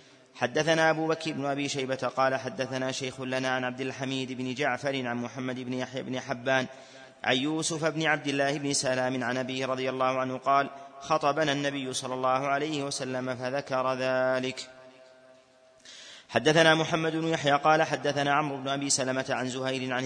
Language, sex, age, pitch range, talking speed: Arabic, male, 30-49, 130-150 Hz, 165 wpm